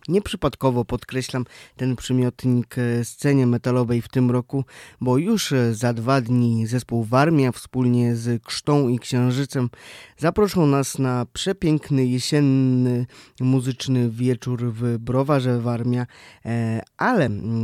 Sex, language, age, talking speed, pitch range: male, Polish, 20-39, 110 wpm, 115-140 Hz